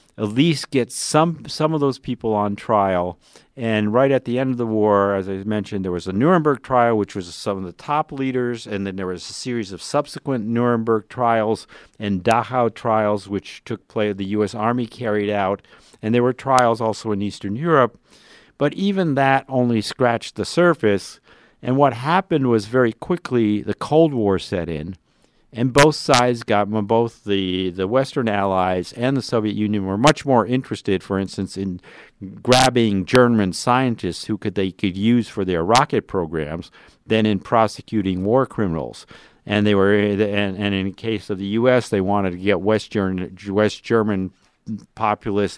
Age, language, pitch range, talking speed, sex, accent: 50-69, English, 100-125 Hz, 180 wpm, male, American